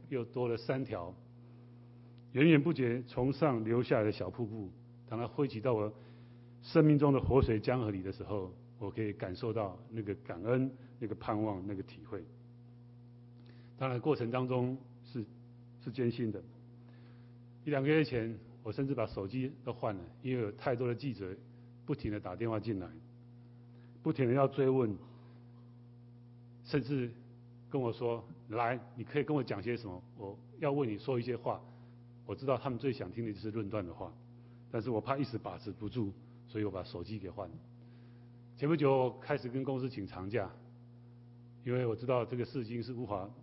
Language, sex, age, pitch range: Chinese, male, 30-49, 115-125 Hz